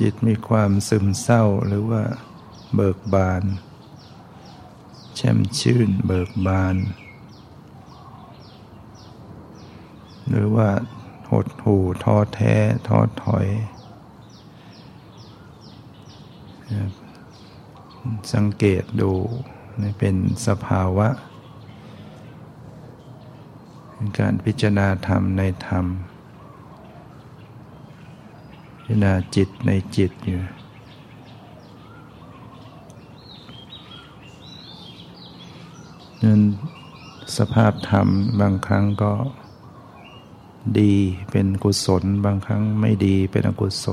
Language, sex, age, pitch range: Thai, male, 60-79, 100-115 Hz